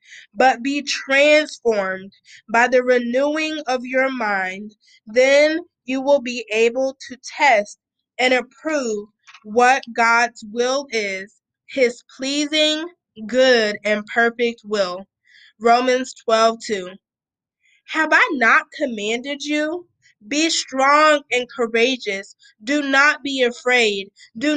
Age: 20-39